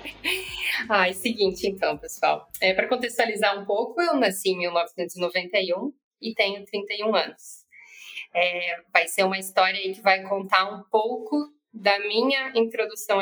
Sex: female